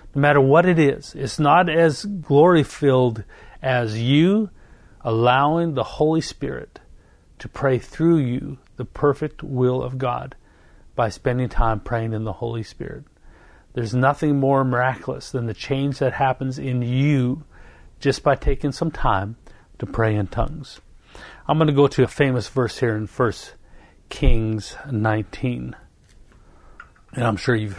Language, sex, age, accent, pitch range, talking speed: English, male, 50-69, American, 115-145 Hz, 150 wpm